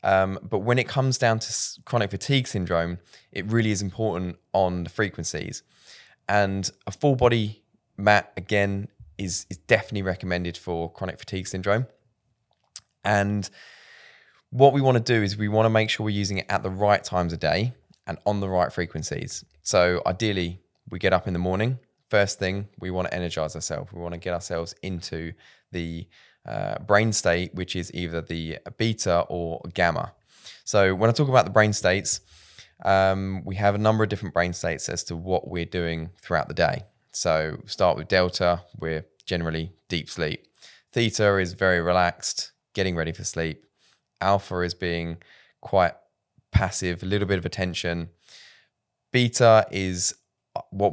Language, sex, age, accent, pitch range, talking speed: English, male, 20-39, British, 85-105 Hz, 170 wpm